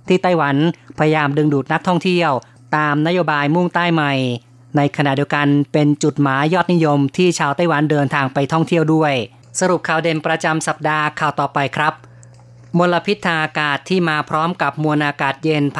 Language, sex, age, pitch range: Thai, female, 20-39, 140-160 Hz